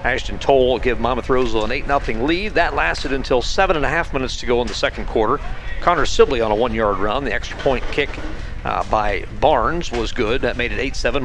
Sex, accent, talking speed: male, American, 220 wpm